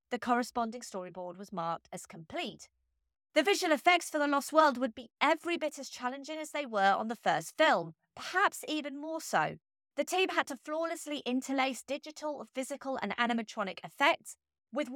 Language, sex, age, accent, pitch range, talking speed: English, female, 30-49, British, 230-305 Hz, 175 wpm